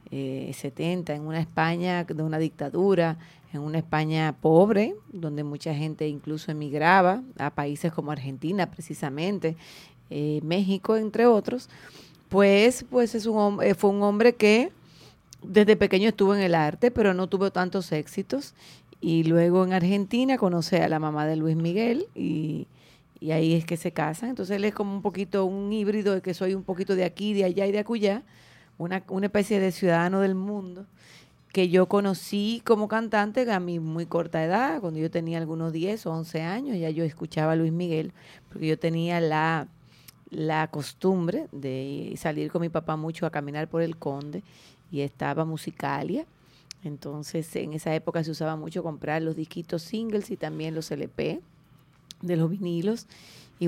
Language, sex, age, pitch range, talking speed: English, female, 30-49, 155-195 Hz, 170 wpm